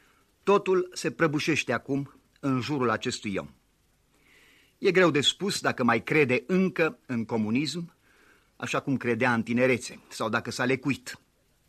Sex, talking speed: male, 140 wpm